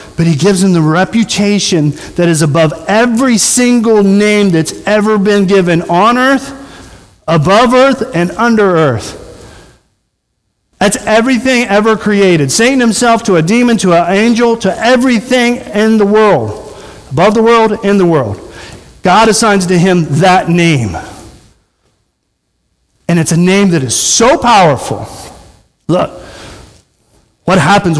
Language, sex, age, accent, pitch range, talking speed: English, male, 40-59, American, 125-200 Hz, 135 wpm